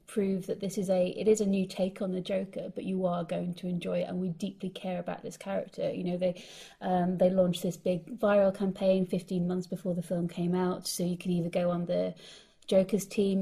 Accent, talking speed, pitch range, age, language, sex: British, 235 wpm, 180-195 Hz, 30-49, English, female